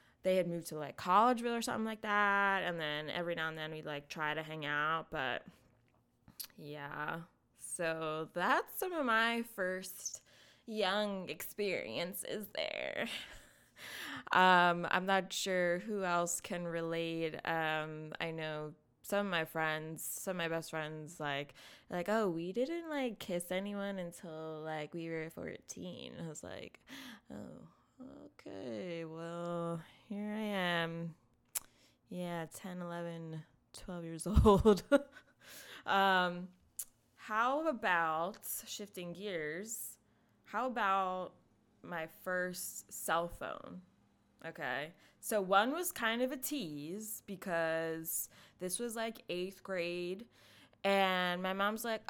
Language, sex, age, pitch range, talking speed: English, female, 20-39, 165-215 Hz, 125 wpm